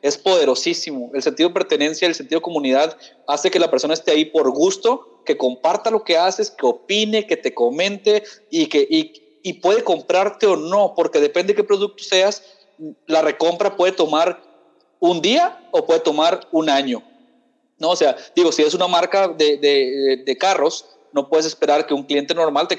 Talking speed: 190 wpm